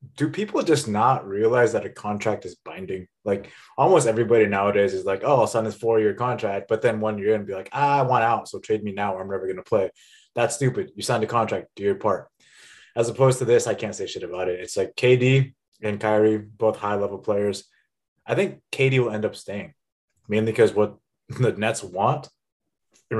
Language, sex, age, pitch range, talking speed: English, male, 20-39, 105-140 Hz, 220 wpm